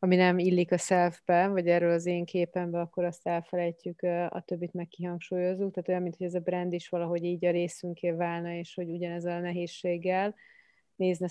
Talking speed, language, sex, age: 185 wpm, Hungarian, female, 30-49